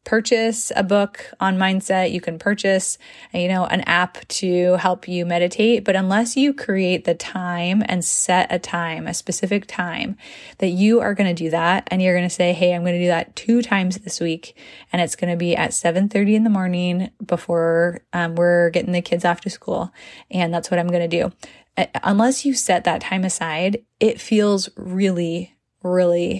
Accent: American